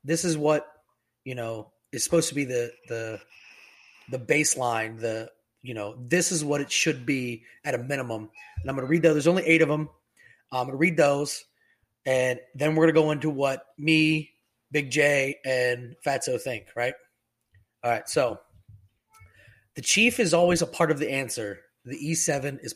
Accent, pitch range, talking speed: American, 120-160 Hz, 185 wpm